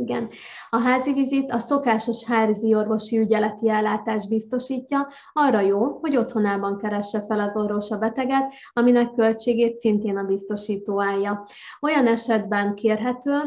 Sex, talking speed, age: female, 135 wpm, 20-39